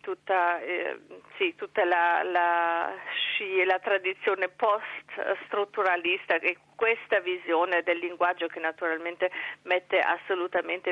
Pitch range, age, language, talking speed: 175-230 Hz, 40-59, Italian, 105 wpm